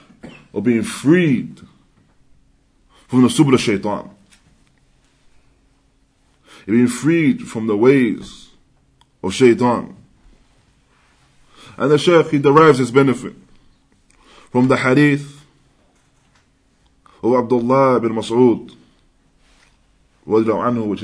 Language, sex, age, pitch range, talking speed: English, male, 20-39, 115-140 Hz, 85 wpm